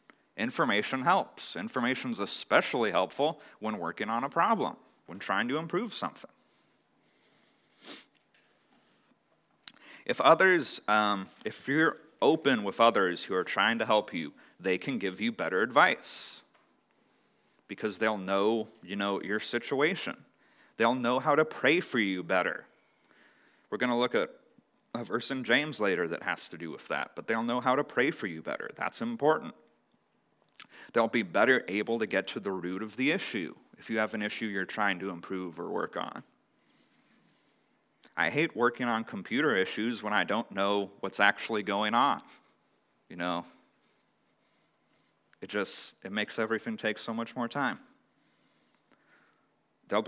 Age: 30-49